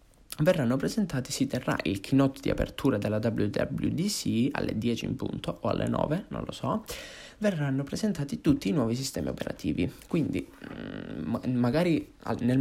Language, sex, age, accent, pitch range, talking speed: Italian, male, 20-39, native, 105-135 Hz, 145 wpm